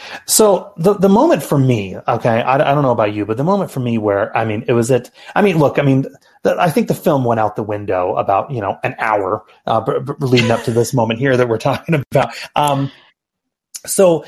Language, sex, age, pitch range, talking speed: English, male, 30-49, 115-150 Hz, 230 wpm